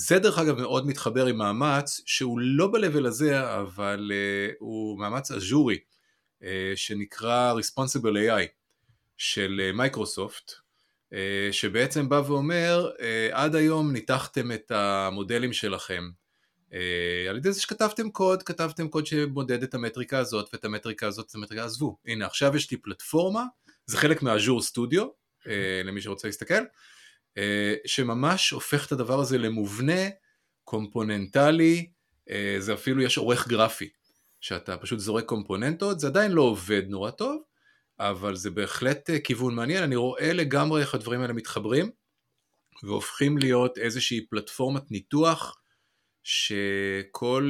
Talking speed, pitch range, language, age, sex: 125 wpm, 105-140 Hz, Hebrew, 30-49, male